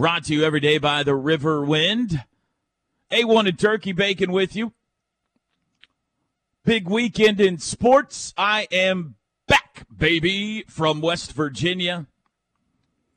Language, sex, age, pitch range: English, male, 40-59, 105-170 Hz